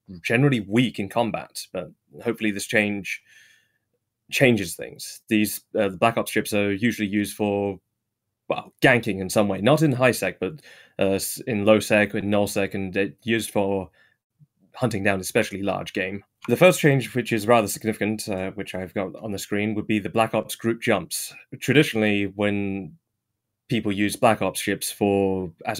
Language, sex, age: English, male, 20-39